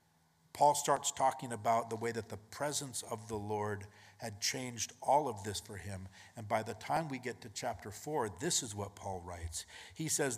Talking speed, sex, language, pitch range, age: 200 wpm, male, English, 95-120 Hz, 50-69